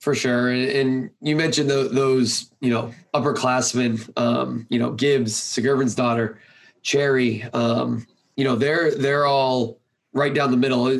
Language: English